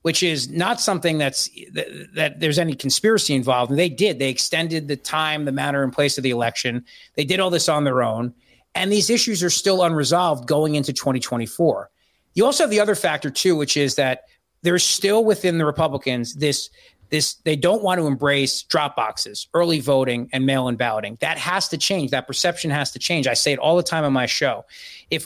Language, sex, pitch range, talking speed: English, male, 135-175 Hz, 210 wpm